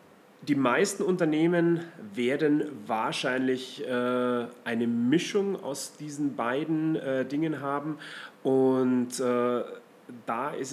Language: German